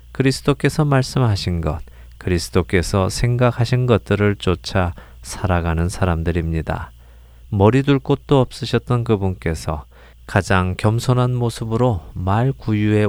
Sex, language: male, Korean